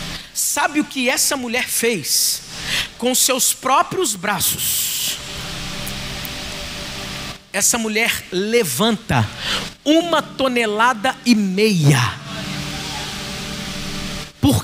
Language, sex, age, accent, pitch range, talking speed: Portuguese, male, 50-69, Brazilian, 175-260 Hz, 75 wpm